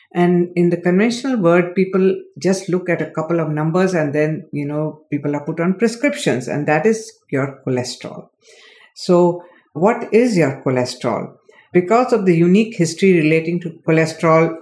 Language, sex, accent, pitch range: English, female, Indian, 145-185 Hz